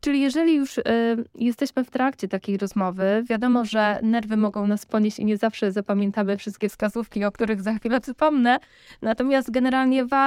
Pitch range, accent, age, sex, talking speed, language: 205-235 Hz, native, 20-39, female, 160 wpm, Polish